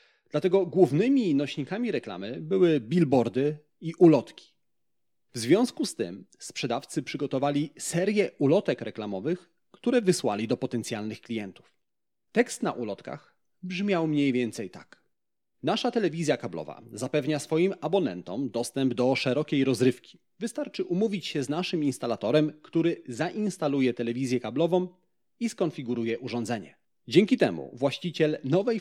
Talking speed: 115 wpm